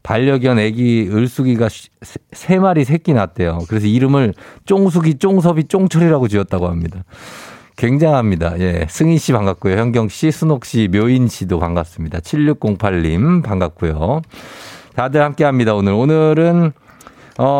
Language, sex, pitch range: Korean, male, 105-160 Hz